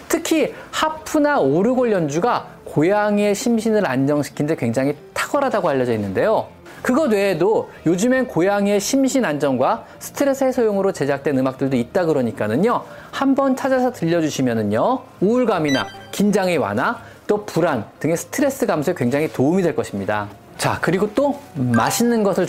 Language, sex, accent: Korean, male, native